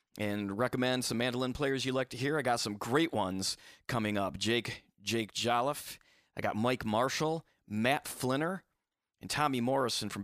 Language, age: English, 30-49